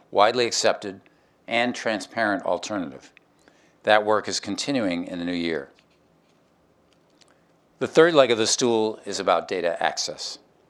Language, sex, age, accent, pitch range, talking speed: English, male, 50-69, American, 95-120 Hz, 130 wpm